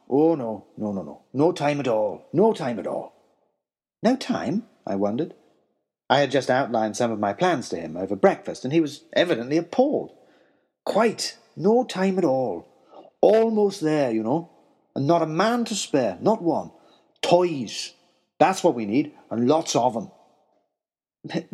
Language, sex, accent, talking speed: English, male, British, 170 wpm